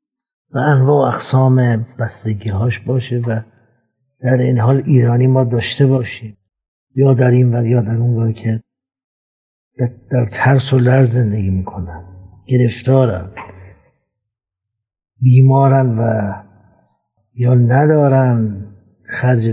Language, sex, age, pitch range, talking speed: Persian, male, 60-79, 110-130 Hz, 110 wpm